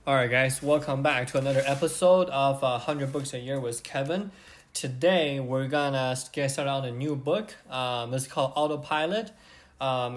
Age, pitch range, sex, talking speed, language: 20-39, 130-155 Hz, male, 185 wpm, English